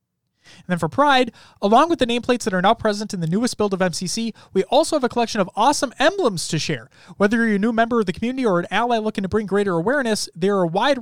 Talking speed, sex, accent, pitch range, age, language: 260 wpm, male, American, 165-245 Hz, 30-49, English